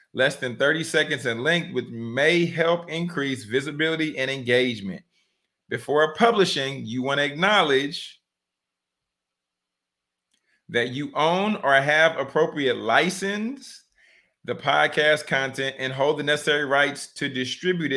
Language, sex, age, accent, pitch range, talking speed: English, male, 30-49, American, 120-155 Hz, 120 wpm